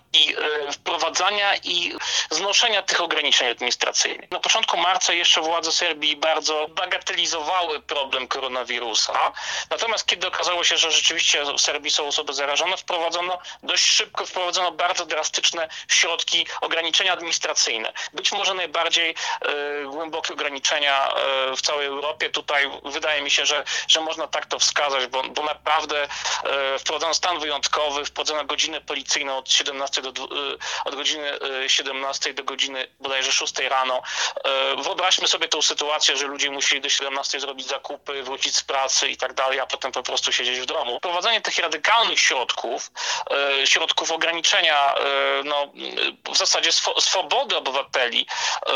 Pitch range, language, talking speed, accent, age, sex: 140-180 Hz, Polish, 135 wpm, native, 30-49, male